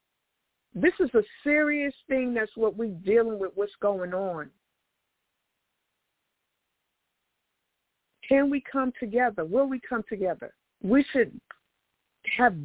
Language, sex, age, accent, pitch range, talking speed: English, female, 50-69, American, 210-255 Hz, 115 wpm